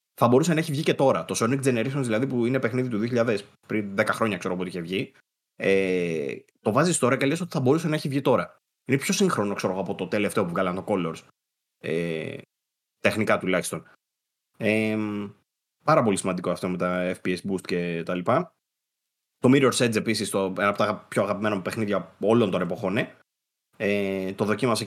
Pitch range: 95-130 Hz